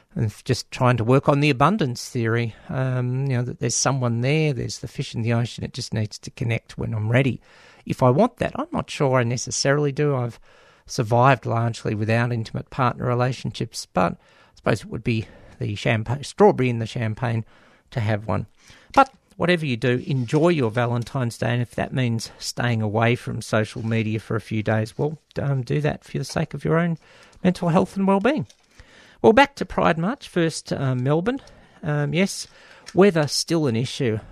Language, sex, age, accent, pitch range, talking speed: English, male, 50-69, Australian, 115-145 Hz, 195 wpm